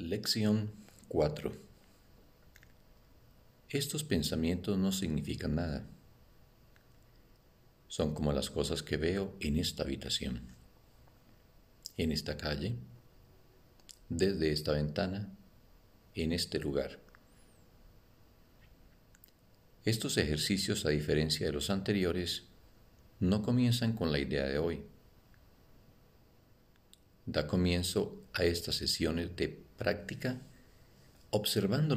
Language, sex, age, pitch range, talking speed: Spanish, male, 50-69, 75-105 Hz, 90 wpm